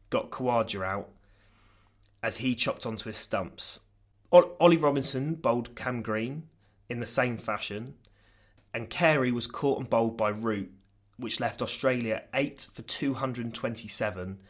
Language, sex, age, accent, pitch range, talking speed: English, male, 20-39, British, 100-120 Hz, 135 wpm